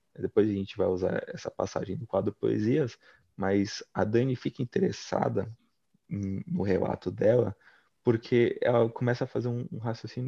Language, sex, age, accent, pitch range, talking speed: Portuguese, male, 20-39, Brazilian, 100-120 Hz, 145 wpm